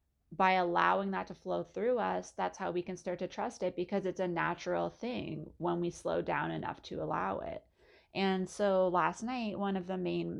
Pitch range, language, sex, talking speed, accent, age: 165-195 Hz, English, female, 210 wpm, American, 30-49